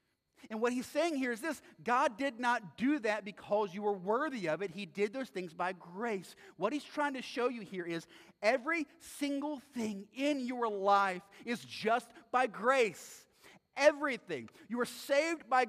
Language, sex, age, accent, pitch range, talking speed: English, male, 30-49, American, 210-285 Hz, 180 wpm